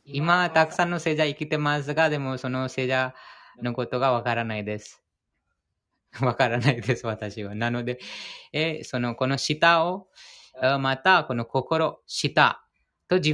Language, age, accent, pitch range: Japanese, 20-39, Indian, 125-160 Hz